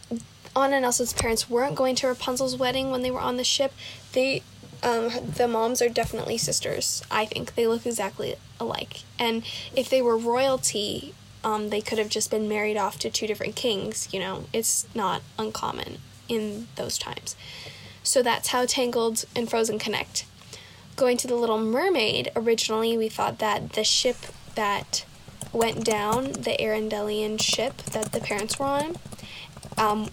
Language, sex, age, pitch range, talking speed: English, female, 10-29, 220-250 Hz, 165 wpm